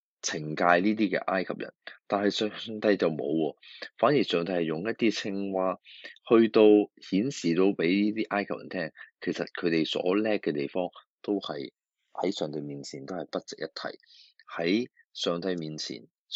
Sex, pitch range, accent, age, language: male, 80-105 Hz, native, 20-39, Chinese